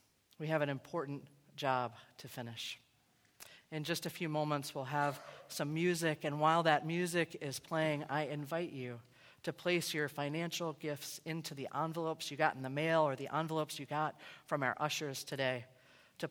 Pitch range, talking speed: 135-165 Hz, 175 wpm